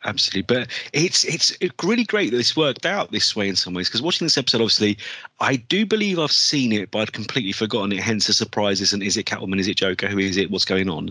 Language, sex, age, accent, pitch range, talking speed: English, male, 30-49, British, 105-140 Hz, 255 wpm